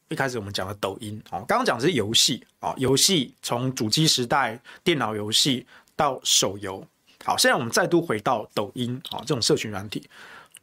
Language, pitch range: Chinese, 125-200 Hz